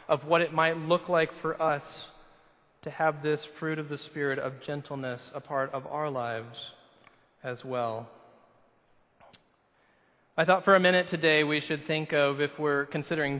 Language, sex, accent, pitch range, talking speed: English, male, American, 140-170 Hz, 165 wpm